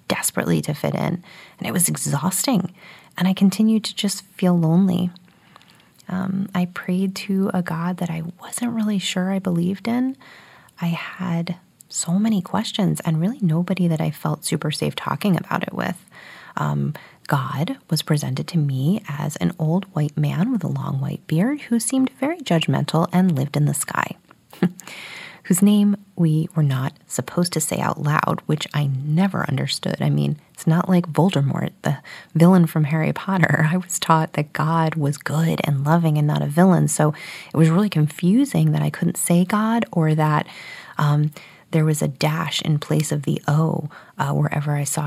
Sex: female